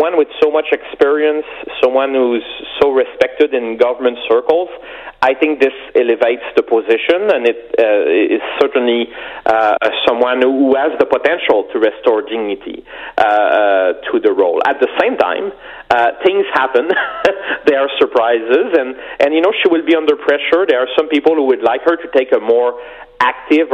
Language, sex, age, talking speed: English, male, 40-59, 170 wpm